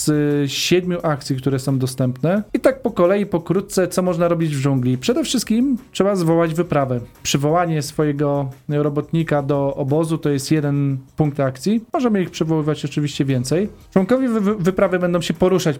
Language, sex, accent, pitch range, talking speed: Polish, male, native, 135-165 Hz, 150 wpm